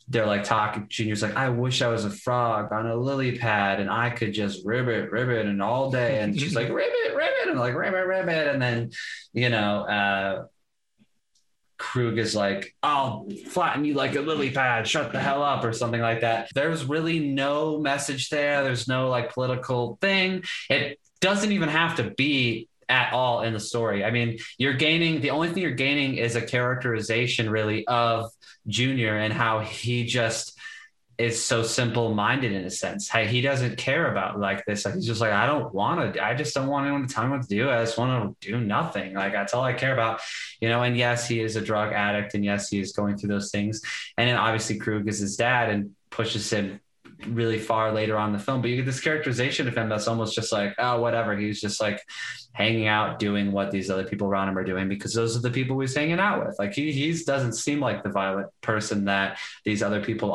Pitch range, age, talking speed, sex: 105-130 Hz, 20-39, 225 wpm, male